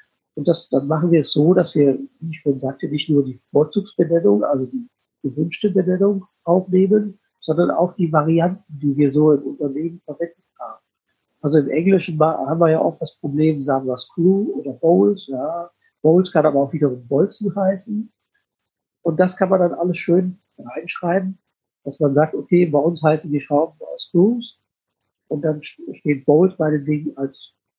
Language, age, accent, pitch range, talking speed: German, 50-69, German, 145-185 Hz, 175 wpm